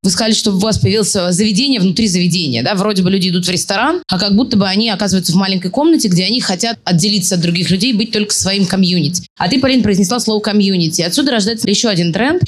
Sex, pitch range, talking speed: female, 200-245 Hz, 225 wpm